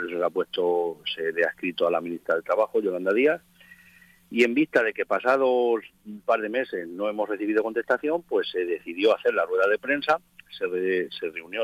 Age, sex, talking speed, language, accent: 50-69, male, 190 wpm, Spanish, Spanish